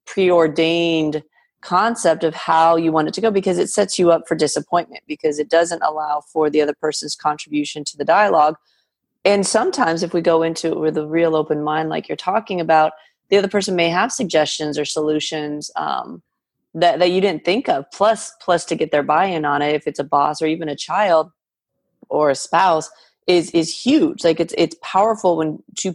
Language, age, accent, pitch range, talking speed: English, 30-49, American, 155-175 Hz, 200 wpm